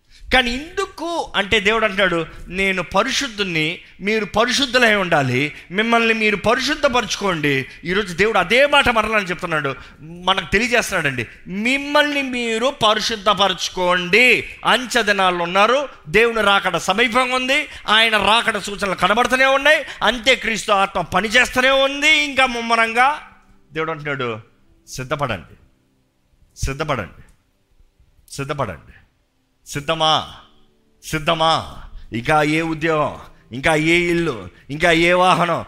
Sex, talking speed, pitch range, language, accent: male, 100 wpm, 150-215 Hz, Telugu, native